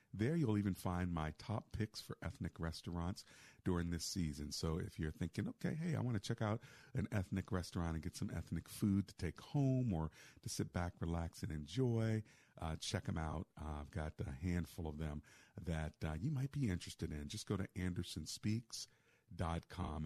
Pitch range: 80-105 Hz